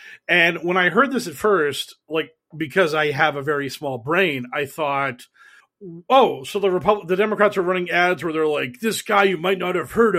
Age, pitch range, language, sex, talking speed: 40-59, 160-215 Hz, English, male, 210 wpm